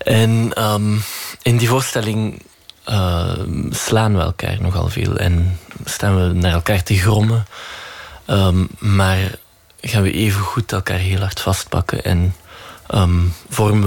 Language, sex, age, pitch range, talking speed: Dutch, male, 20-39, 95-110 Hz, 135 wpm